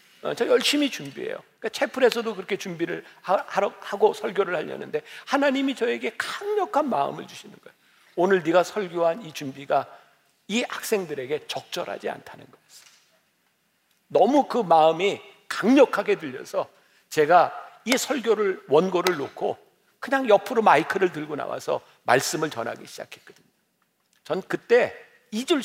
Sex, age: male, 50-69